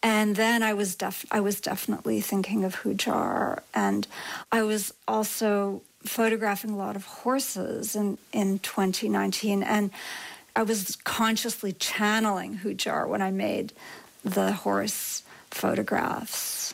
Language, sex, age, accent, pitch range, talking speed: English, female, 40-59, American, 205-230 Hz, 125 wpm